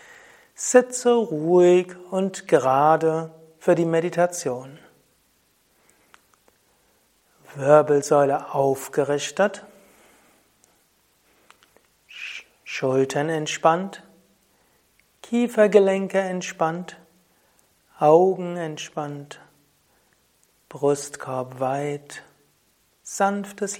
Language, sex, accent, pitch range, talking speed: German, male, German, 140-190 Hz, 50 wpm